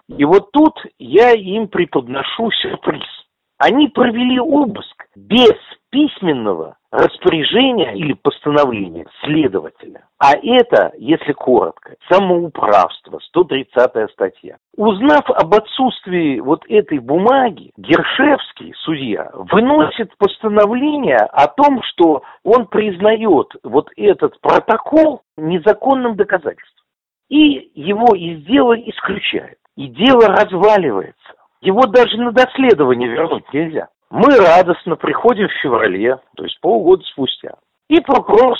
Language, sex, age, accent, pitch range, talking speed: Russian, male, 50-69, native, 170-265 Hz, 105 wpm